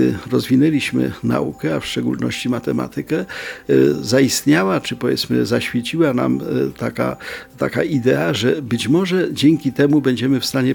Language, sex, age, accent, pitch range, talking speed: Polish, male, 50-69, native, 120-145 Hz, 125 wpm